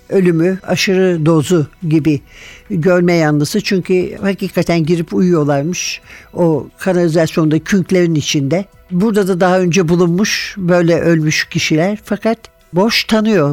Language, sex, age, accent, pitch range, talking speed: Turkish, male, 60-79, native, 155-190 Hz, 110 wpm